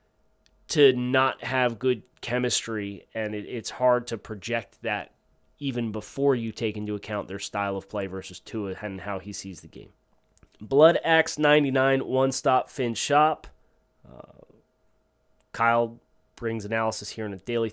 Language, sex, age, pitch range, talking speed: English, male, 30-49, 110-140 Hz, 155 wpm